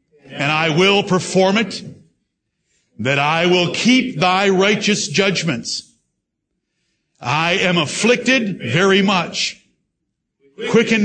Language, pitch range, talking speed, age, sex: English, 160-205 Hz, 100 wpm, 60-79, male